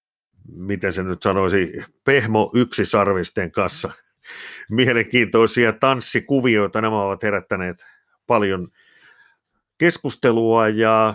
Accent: native